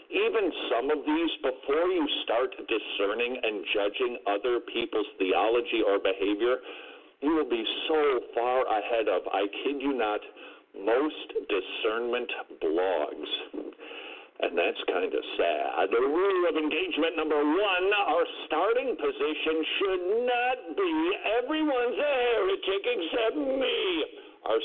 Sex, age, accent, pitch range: male, 50-69, American, 330-435 Hz